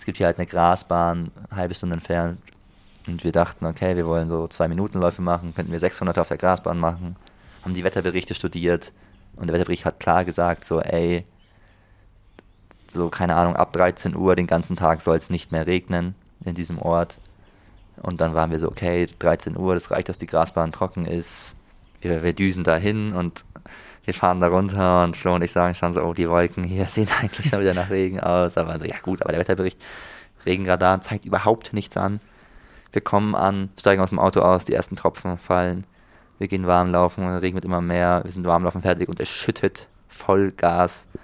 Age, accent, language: 20-39, German, German